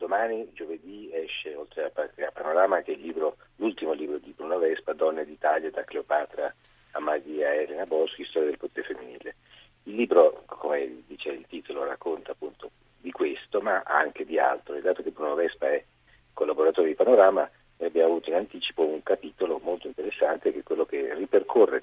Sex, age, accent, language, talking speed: male, 50-69, native, Italian, 170 wpm